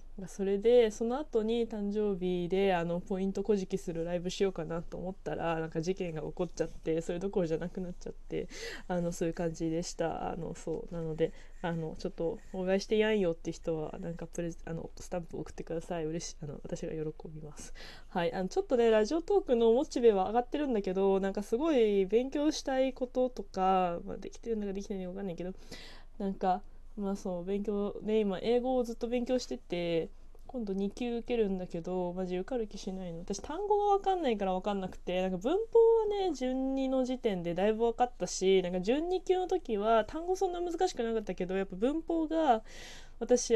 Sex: female